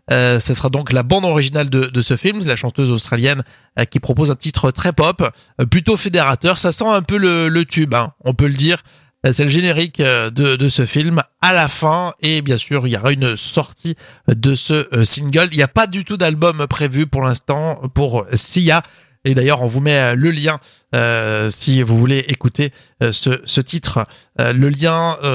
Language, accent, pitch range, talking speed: French, French, 130-165 Hz, 210 wpm